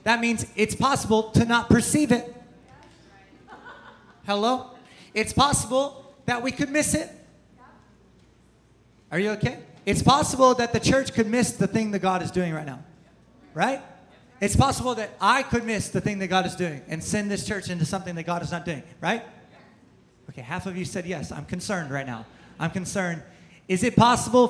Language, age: English, 30-49